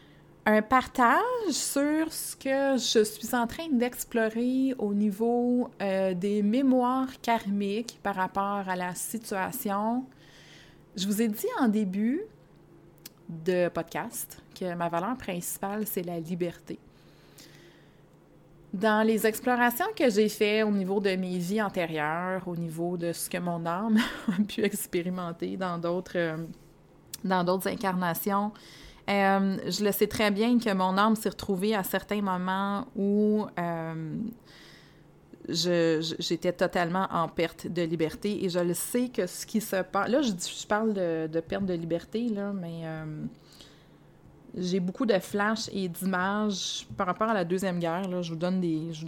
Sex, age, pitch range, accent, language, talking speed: female, 30-49, 175-215 Hz, Canadian, French, 145 wpm